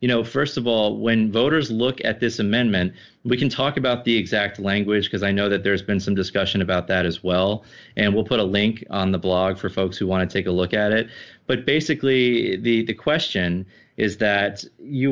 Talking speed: 220 wpm